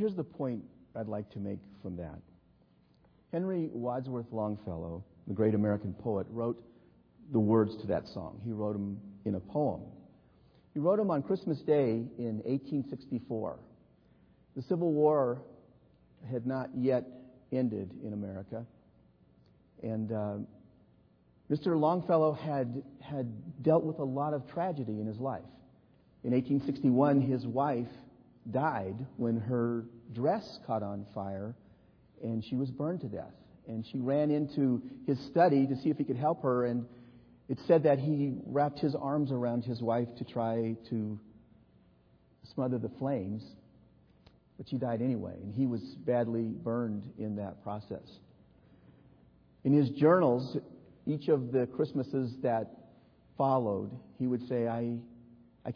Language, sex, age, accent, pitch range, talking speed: English, male, 50-69, American, 105-140 Hz, 145 wpm